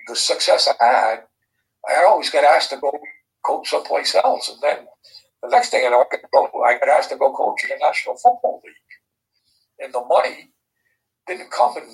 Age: 60-79